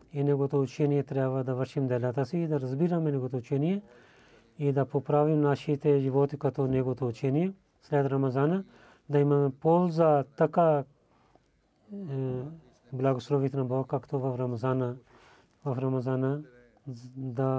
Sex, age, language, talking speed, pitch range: male, 30-49, Bulgarian, 125 wpm, 130-145 Hz